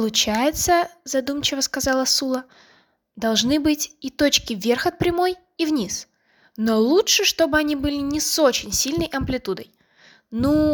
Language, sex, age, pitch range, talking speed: English, female, 10-29, 215-285 Hz, 135 wpm